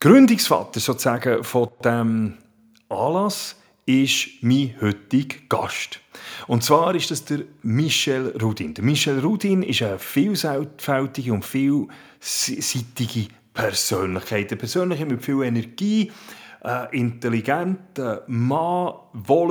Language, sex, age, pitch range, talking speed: German, male, 40-59, 115-155 Hz, 100 wpm